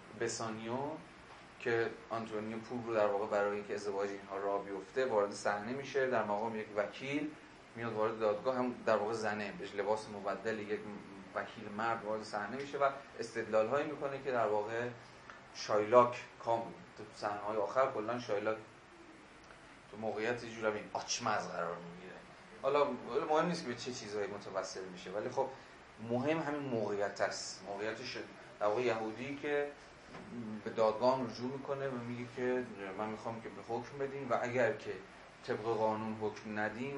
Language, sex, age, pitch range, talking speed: Persian, male, 30-49, 105-125 Hz, 155 wpm